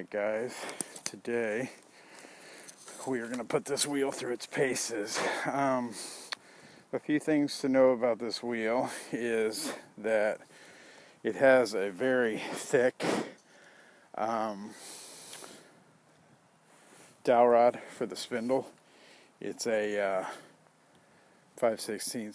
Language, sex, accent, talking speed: English, male, American, 100 wpm